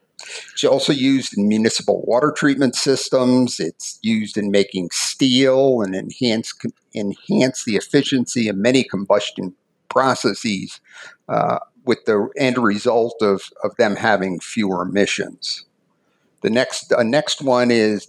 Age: 50-69